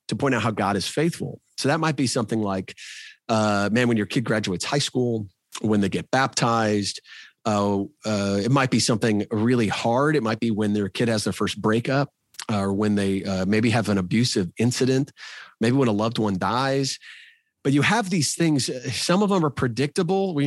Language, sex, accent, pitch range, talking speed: English, male, American, 110-140 Hz, 200 wpm